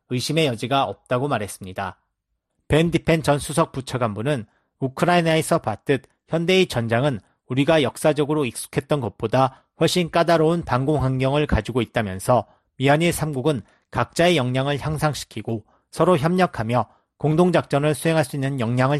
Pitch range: 120-155 Hz